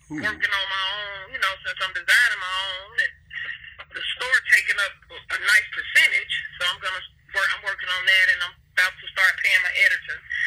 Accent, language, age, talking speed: American, English, 30-49, 205 wpm